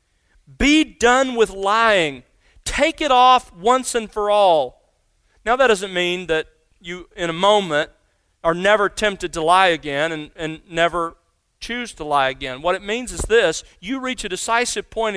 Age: 40-59